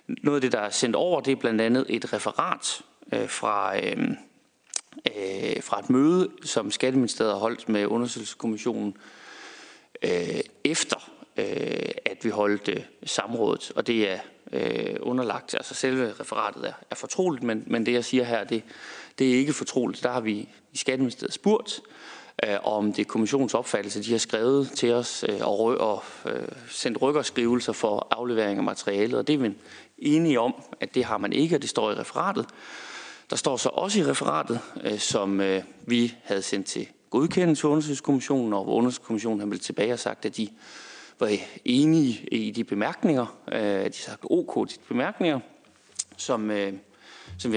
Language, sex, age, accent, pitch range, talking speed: Danish, male, 30-49, native, 110-140 Hz, 170 wpm